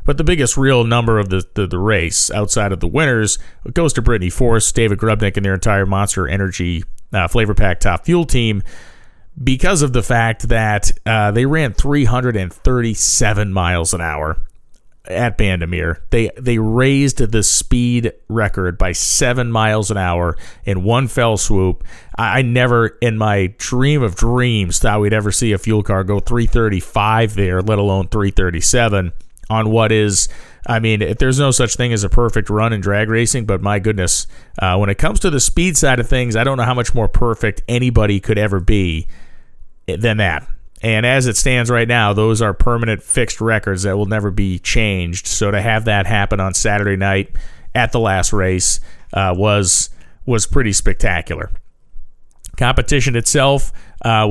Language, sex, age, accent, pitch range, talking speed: English, male, 40-59, American, 95-120 Hz, 175 wpm